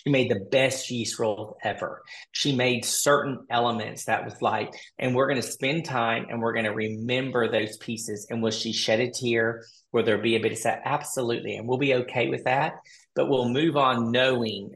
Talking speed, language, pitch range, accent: 210 wpm, English, 110-125 Hz, American